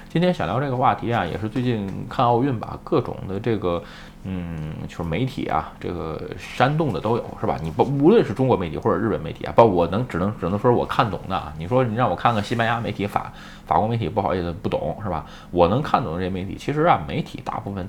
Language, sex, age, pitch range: Chinese, male, 20-39, 95-125 Hz